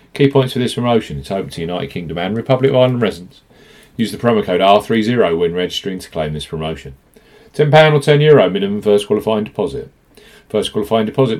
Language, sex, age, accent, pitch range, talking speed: English, male, 40-59, British, 105-150 Hz, 190 wpm